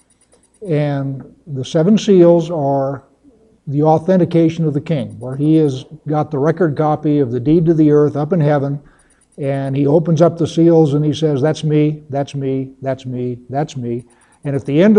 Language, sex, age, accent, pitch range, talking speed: English, male, 60-79, American, 140-170 Hz, 190 wpm